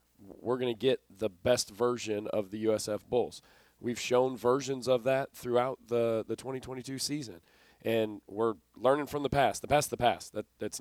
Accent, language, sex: American, English, male